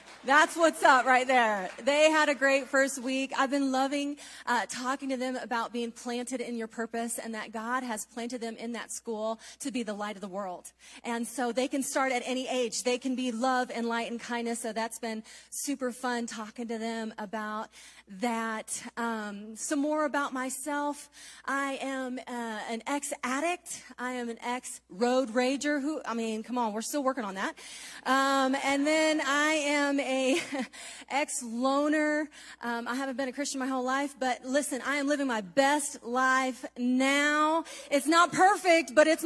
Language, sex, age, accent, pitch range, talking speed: English, female, 30-49, American, 245-295 Hz, 185 wpm